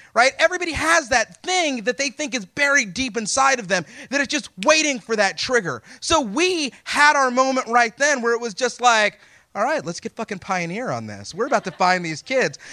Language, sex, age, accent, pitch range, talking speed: English, male, 30-49, American, 205-310 Hz, 220 wpm